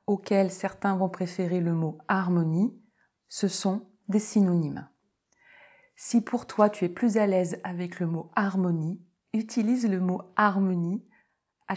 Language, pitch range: French, 180-225 Hz